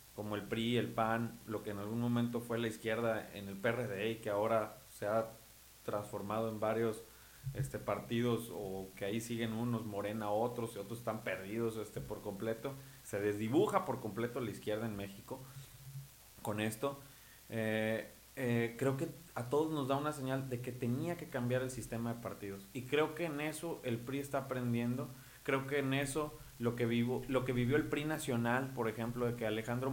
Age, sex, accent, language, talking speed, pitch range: 30-49, male, Mexican, Spanish, 190 wpm, 115-135 Hz